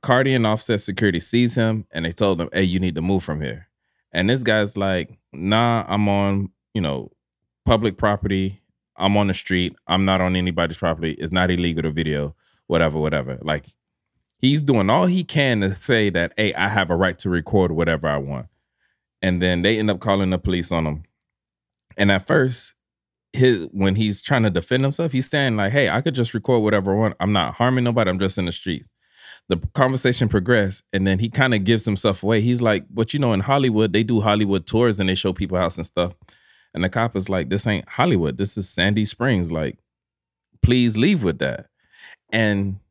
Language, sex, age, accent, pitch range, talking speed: English, male, 20-39, American, 90-115 Hz, 210 wpm